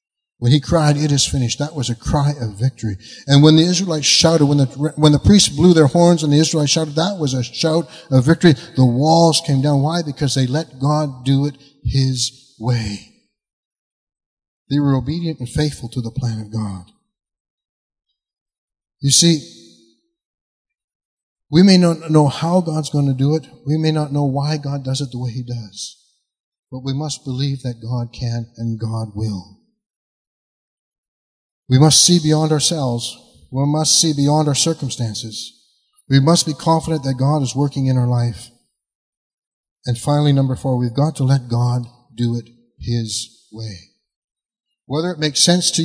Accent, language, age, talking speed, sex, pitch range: American, English, 60-79, 175 wpm, male, 125-160 Hz